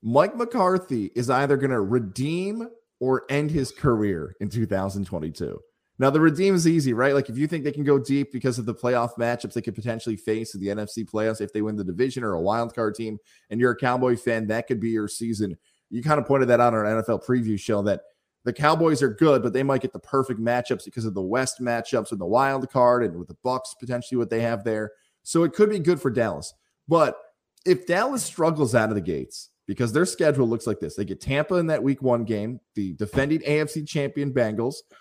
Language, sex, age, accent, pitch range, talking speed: English, male, 20-39, American, 120-175 Hz, 230 wpm